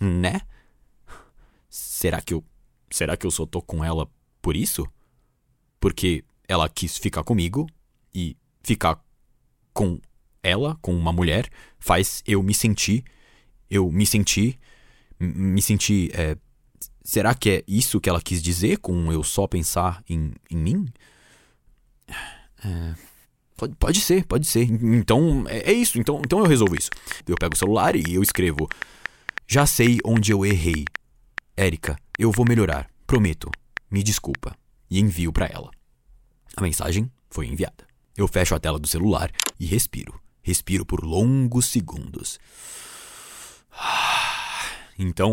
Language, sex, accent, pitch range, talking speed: Portuguese, male, Brazilian, 85-115 Hz, 135 wpm